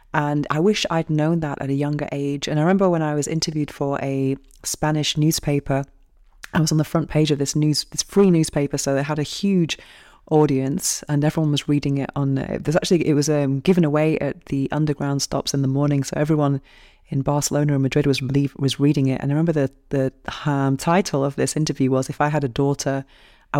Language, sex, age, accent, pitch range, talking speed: English, female, 30-49, British, 135-155 Hz, 220 wpm